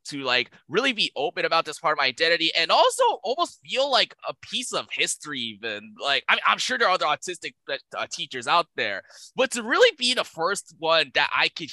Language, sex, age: English, male, 20-39